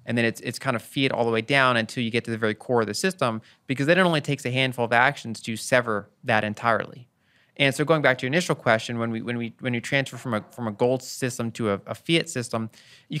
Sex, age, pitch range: male, 20-39, 115-135 Hz